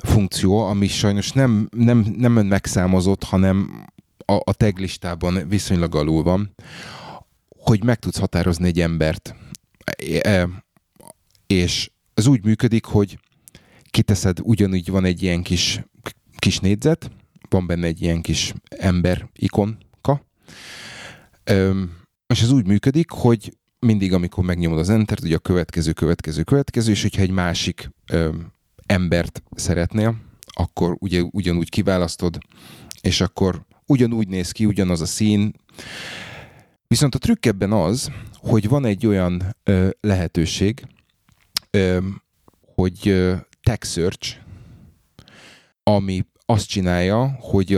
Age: 30-49